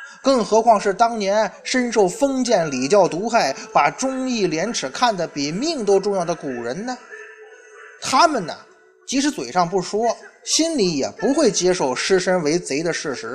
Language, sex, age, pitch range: Chinese, male, 20-39, 195-310 Hz